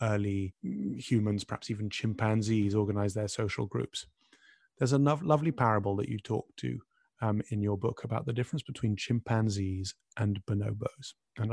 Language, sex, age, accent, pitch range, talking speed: English, male, 30-49, British, 105-135 Hz, 150 wpm